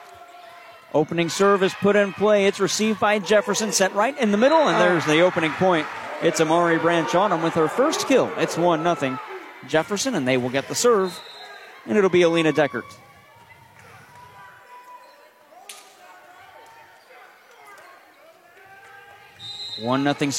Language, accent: English, American